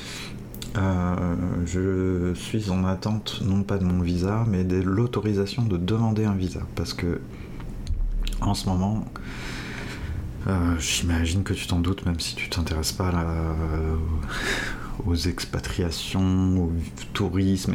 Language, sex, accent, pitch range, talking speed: French, male, French, 85-100 Hz, 130 wpm